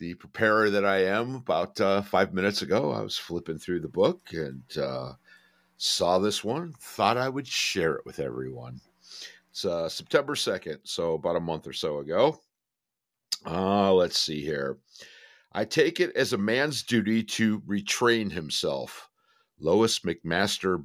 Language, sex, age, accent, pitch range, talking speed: English, male, 50-69, American, 90-120 Hz, 160 wpm